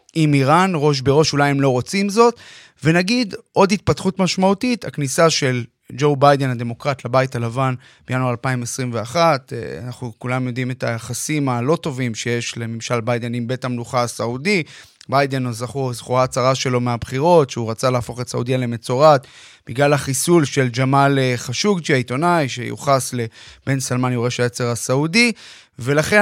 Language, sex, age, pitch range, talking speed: Hebrew, male, 30-49, 125-160 Hz, 135 wpm